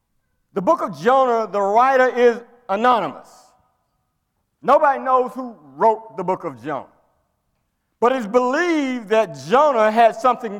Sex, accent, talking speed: male, American, 130 wpm